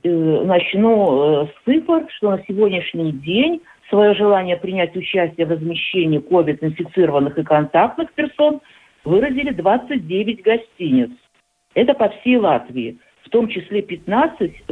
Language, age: Russian, 50-69